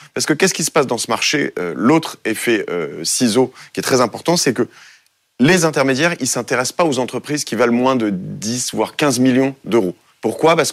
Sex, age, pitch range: male, 30-49, 110-140 Hz